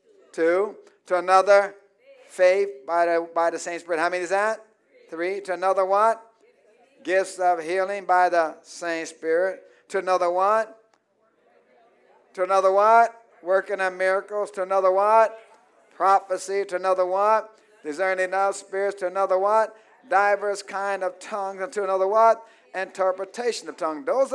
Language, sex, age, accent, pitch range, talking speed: English, male, 60-79, American, 190-240 Hz, 145 wpm